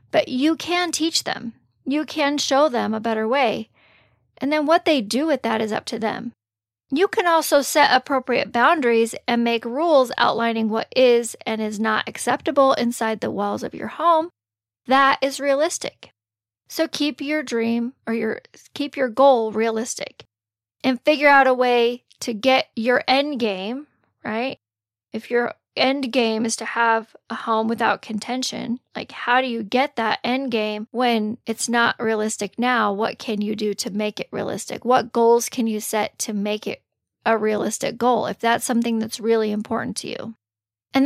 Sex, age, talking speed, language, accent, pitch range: female, 40-59, 175 wpm, English, American, 220-275 Hz